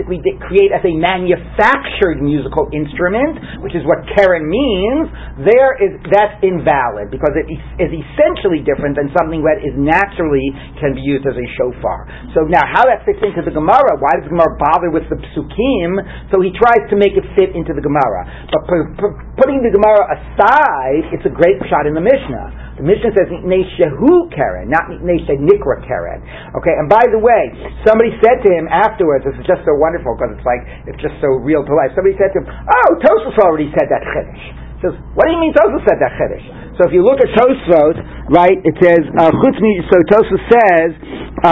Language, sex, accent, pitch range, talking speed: English, male, American, 160-215 Hz, 195 wpm